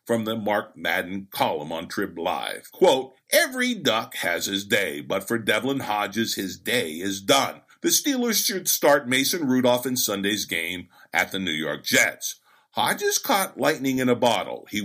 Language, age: English, 50-69